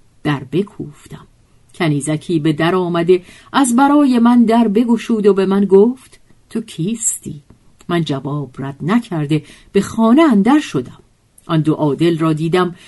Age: 50-69